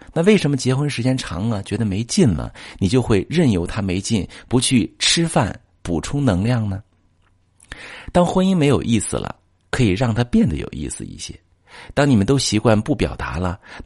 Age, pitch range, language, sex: 50-69, 90-120 Hz, Chinese, male